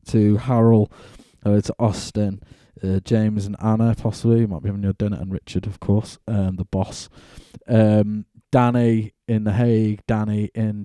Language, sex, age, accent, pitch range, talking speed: English, male, 20-39, British, 100-115 Hz, 165 wpm